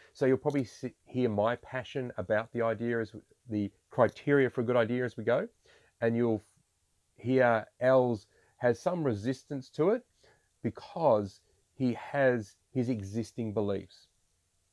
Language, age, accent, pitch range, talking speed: English, 30-49, Australian, 105-125 Hz, 140 wpm